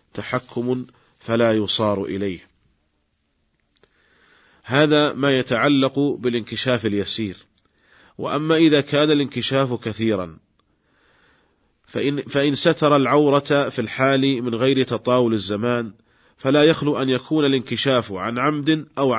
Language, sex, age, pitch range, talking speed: Arabic, male, 40-59, 110-135 Hz, 100 wpm